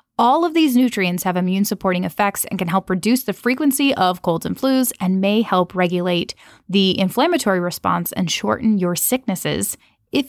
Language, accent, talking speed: English, American, 170 wpm